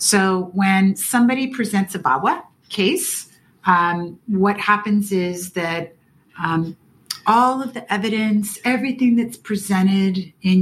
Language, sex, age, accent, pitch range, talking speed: English, female, 40-59, American, 160-205 Hz, 120 wpm